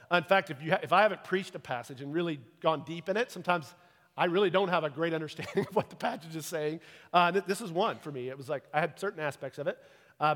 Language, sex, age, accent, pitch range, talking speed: English, male, 40-59, American, 145-180 Hz, 260 wpm